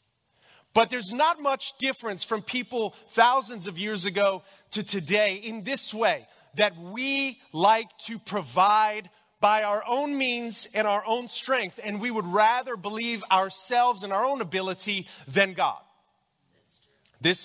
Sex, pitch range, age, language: male, 195-245 Hz, 30-49, English